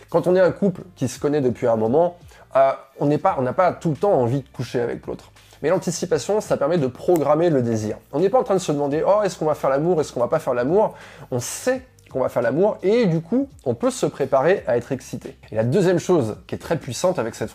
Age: 20-39